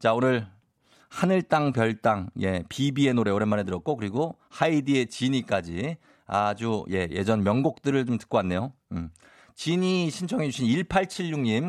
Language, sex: Korean, male